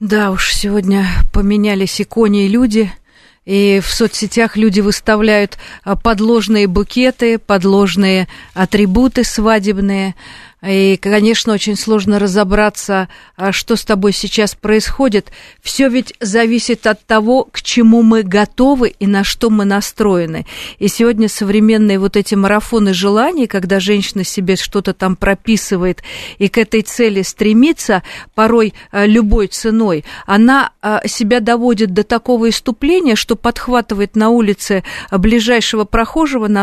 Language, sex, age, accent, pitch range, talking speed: Russian, female, 40-59, native, 200-235 Hz, 120 wpm